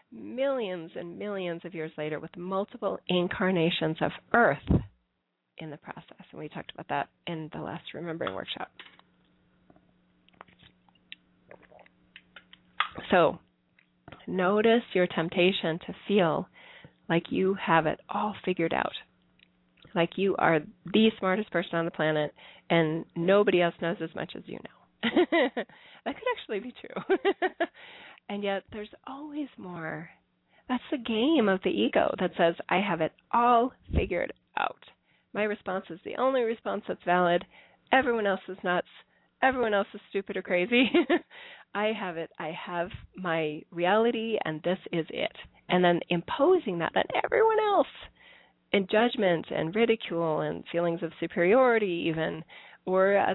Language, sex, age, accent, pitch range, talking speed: English, female, 30-49, American, 165-220 Hz, 140 wpm